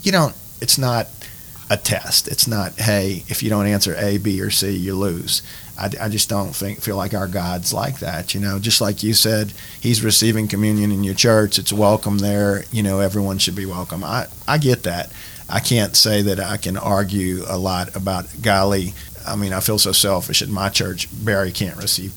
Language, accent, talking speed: English, American, 210 wpm